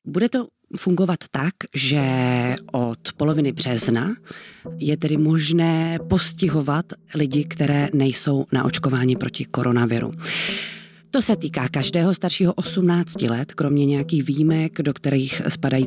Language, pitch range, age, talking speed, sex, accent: Czech, 145-180 Hz, 30-49, 120 wpm, female, native